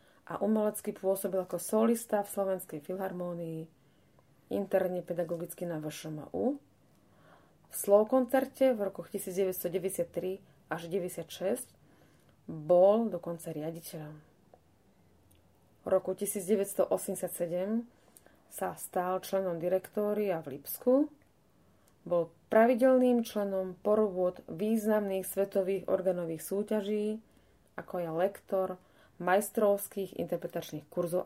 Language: Slovak